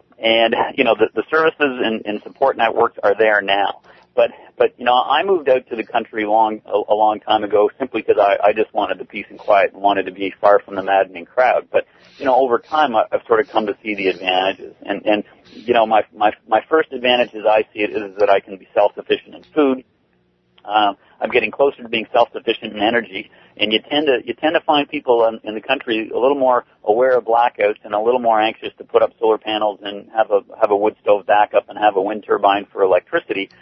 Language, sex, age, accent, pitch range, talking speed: English, male, 50-69, American, 105-150 Hz, 245 wpm